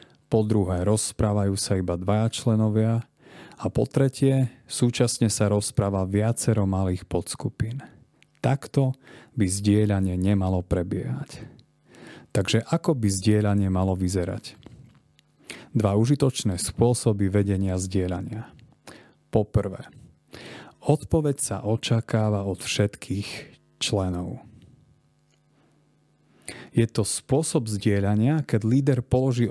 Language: Slovak